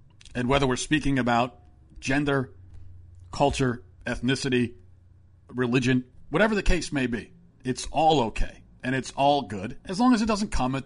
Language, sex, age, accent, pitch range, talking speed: English, male, 40-59, American, 120-155 Hz, 155 wpm